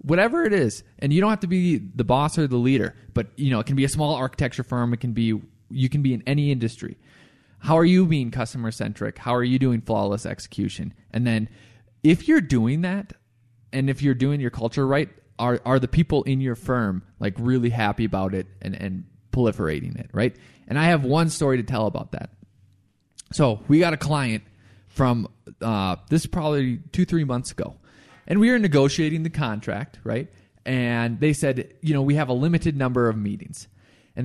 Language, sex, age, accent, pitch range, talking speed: English, male, 20-39, American, 115-150 Hz, 205 wpm